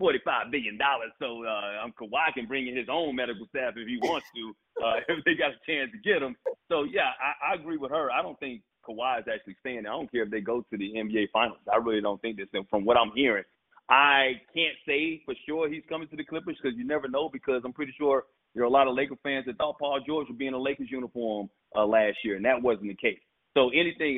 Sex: male